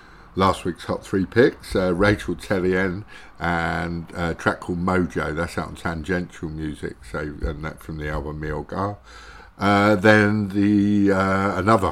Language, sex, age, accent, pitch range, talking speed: English, male, 50-69, British, 80-100 Hz, 145 wpm